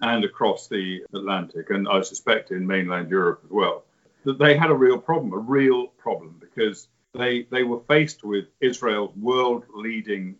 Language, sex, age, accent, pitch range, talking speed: English, male, 50-69, British, 95-135 Hz, 165 wpm